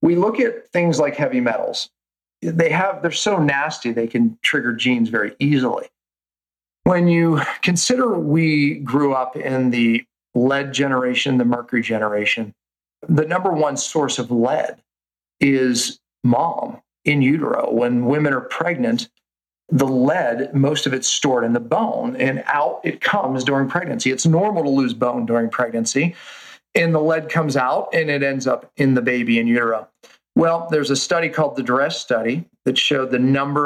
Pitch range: 115-155 Hz